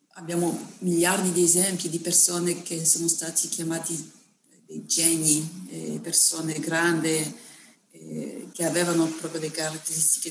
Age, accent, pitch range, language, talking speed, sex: 40-59, native, 160-190 Hz, Italian, 110 wpm, female